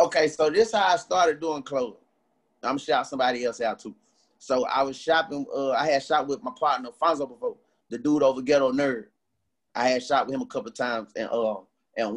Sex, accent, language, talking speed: male, American, English, 225 wpm